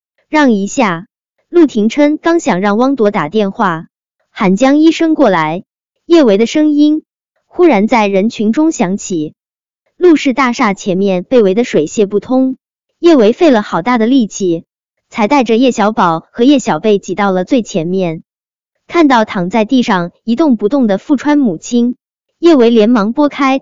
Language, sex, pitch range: Chinese, male, 195-280 Hz